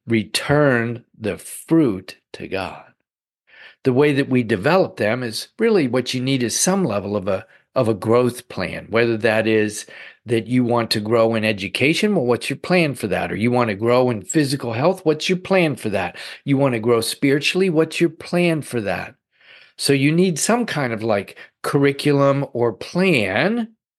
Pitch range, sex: 115-145 Hz, male